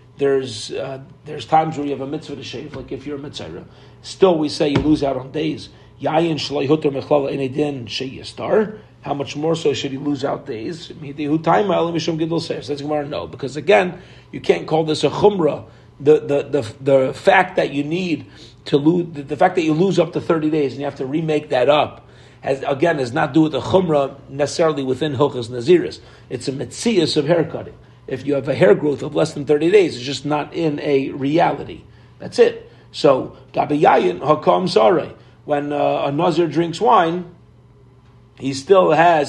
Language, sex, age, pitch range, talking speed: English, male, 40-59, 135-165 Hz, 175 wpm